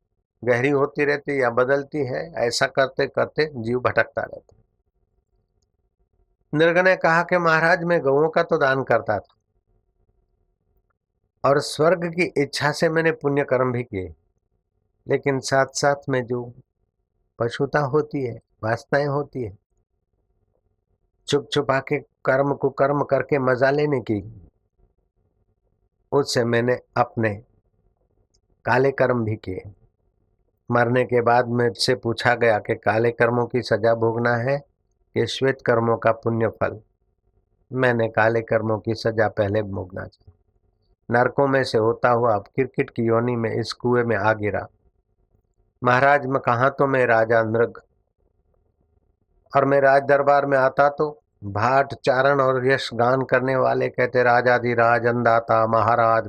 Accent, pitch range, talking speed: native, 105-135 Hz, 140 wpm